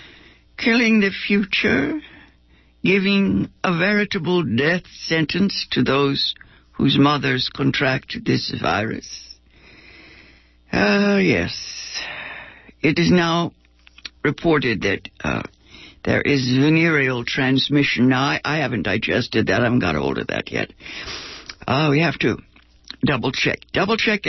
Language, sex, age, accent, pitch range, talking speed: English, female, 60-79, American, 125-195 Hz, 120 wpm